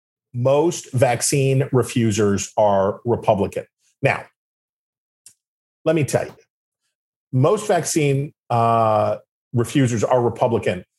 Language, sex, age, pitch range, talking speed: English, male, 40-59, 115-140 Hz, 85 wpm